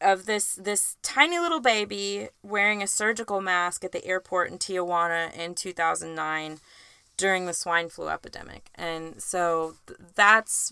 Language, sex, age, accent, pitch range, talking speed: English, female, 20-39, American, 175-220 Hz, 140 wpm